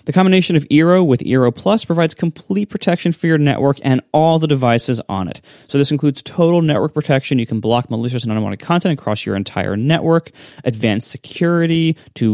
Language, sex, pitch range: English, male, 120-160 Hz